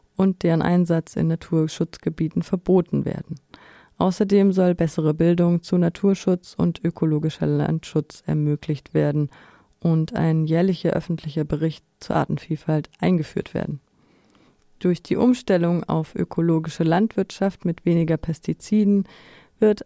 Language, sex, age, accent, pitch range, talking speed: German, female, 30-49, German, 155-190 Hz, 110 wpm